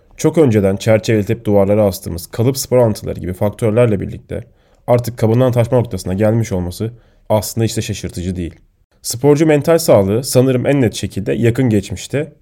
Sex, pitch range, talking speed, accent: male, 95-125 Hz, 150 wpm, native